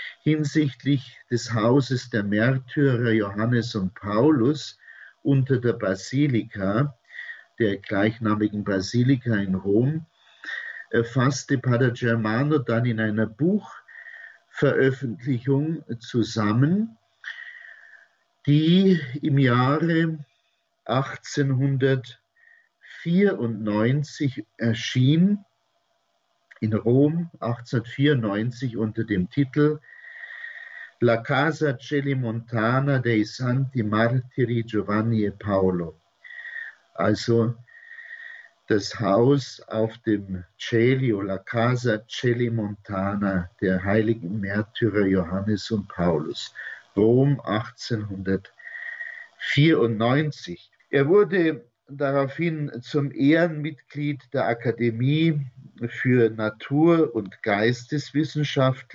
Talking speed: 75 wpm